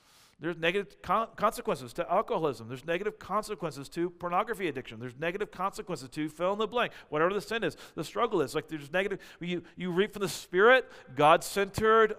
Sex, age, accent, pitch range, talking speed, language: male, 40-59, American, 145-185 Hz, 180 wpm, English